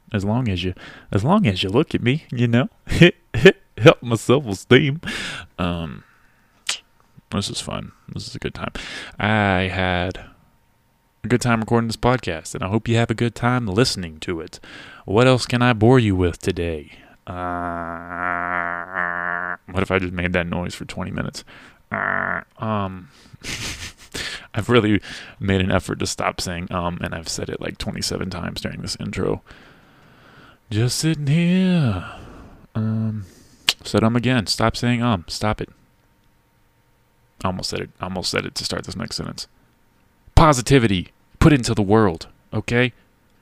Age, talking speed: 20-39, 160 wpm